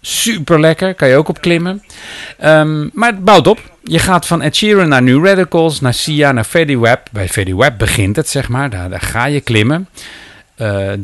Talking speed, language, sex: 200 wpm, Dutch, male